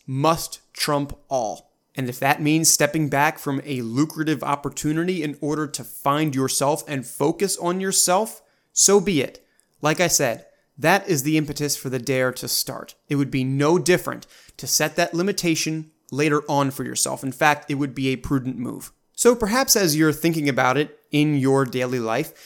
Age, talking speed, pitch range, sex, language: 30-49, 185 wpm, 135-165 Hz, male, English